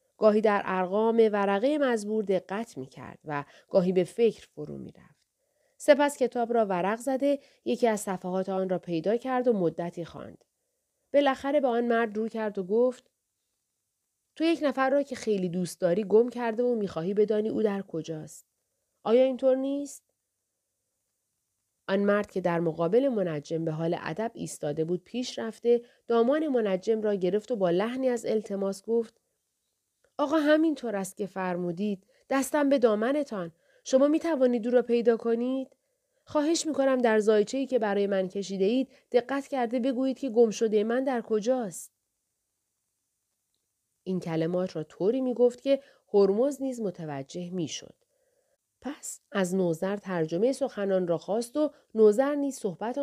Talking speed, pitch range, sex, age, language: 155 wpm, 185-260 Hz, female, 30-49, Persian